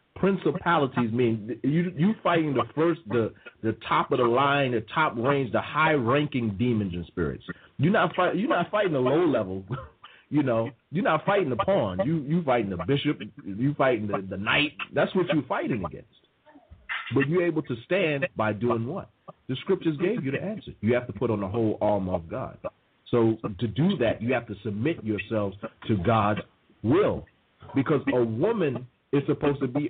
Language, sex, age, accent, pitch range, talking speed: English, male, 40-59, American, 110-150 Hz, 195 wpm